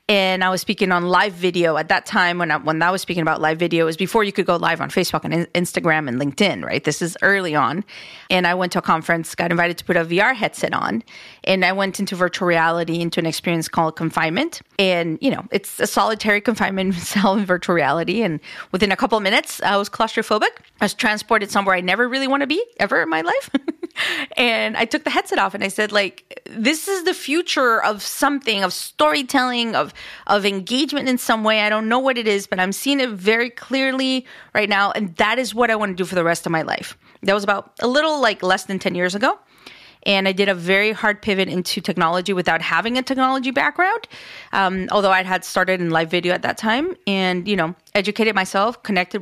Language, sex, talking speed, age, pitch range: English, female, 230 wpm, 30-49, 180-225 Hz